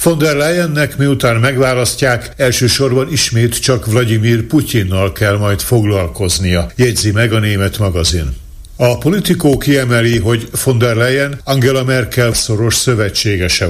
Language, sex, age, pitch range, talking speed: Hungarian, male, 60-79, 110-130 Hz, 125 wpm